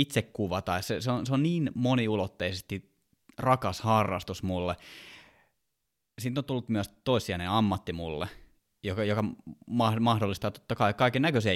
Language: Finnish